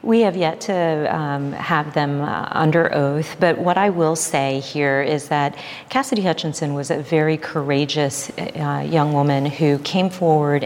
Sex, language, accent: female, English, American